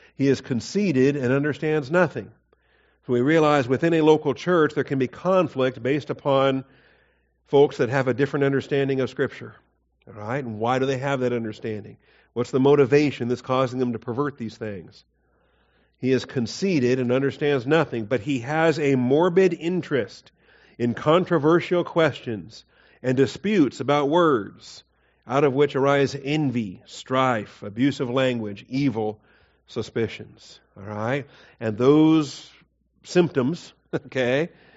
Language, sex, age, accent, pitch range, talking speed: English, male, 50-69, American, 115-145 Hz, 135 wpm